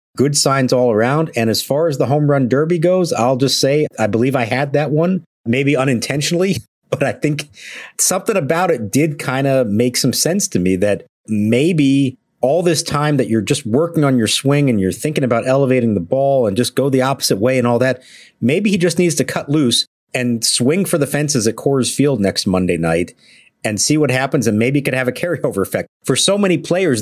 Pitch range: 115-145 Hz